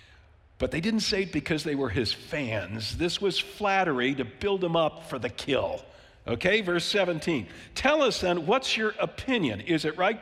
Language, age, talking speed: English, 50-69, 190 wpm